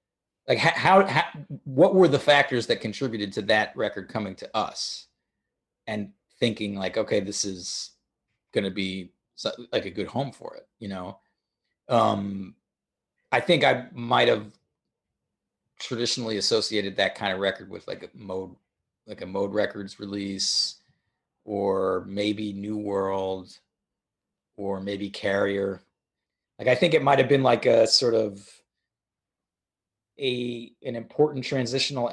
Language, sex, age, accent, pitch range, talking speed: English, male, 30-49, American, 100-120 Hz, 140 wpm